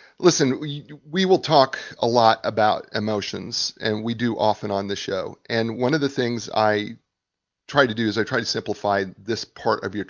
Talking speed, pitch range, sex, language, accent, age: 200 wpm, 105-135 Hz, male, English, American, 40-59